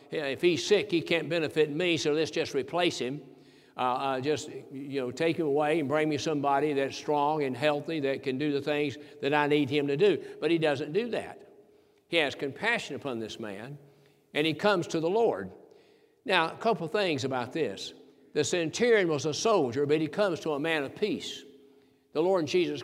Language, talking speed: English, 200 wpm